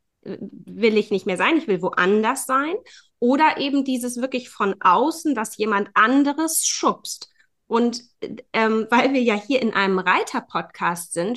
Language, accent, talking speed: German, German, 155 wpm